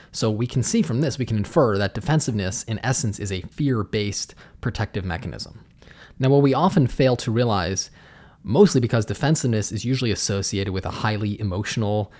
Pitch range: 100-130 Hz